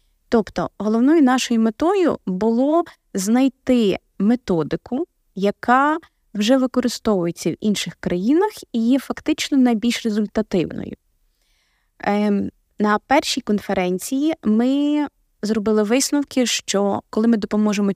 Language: Ukrainian